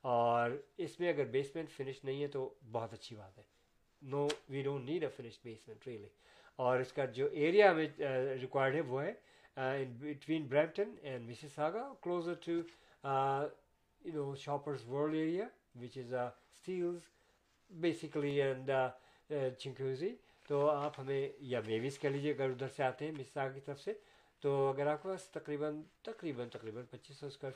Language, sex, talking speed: Urdu, male, 120 wpm